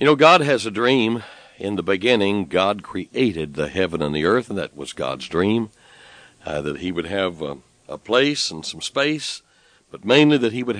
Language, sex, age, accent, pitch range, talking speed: English, male, 60-79, American, 90-125 Hz, 205 wpm